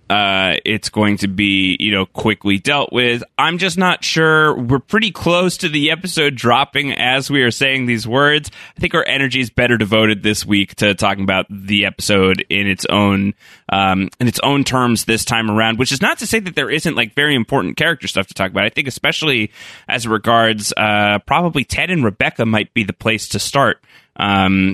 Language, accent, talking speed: English, American, 205 wpm